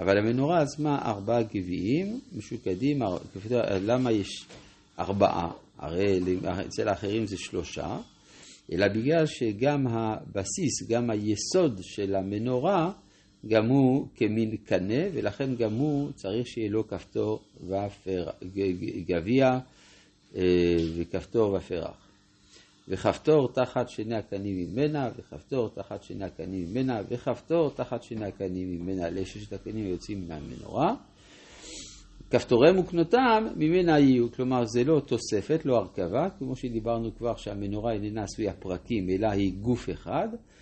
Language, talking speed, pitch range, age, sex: Hebrew, 115 wpm, 100-130 Hz, 50-69, male